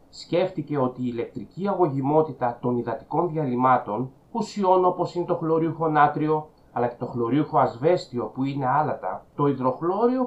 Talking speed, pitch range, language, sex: 140 wpm, 125-175 Hz, Greek, male